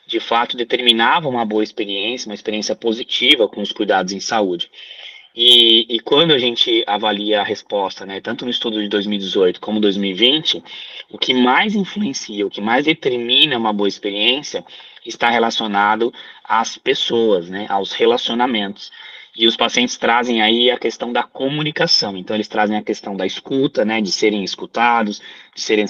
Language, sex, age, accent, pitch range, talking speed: Portuguese, male, 20-39, Brazilian, 105-125 Hz, 160 wpm